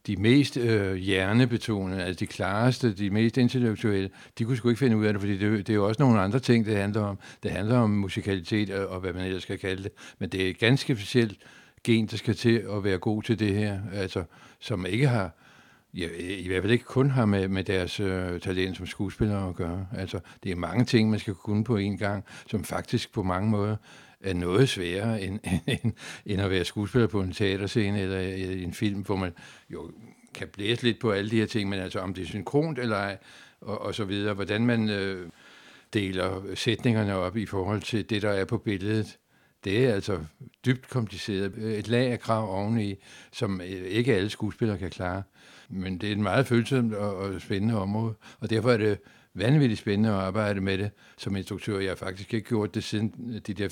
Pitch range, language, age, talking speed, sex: 95-115 Hz, Danish, 60-79, 210 wpm, male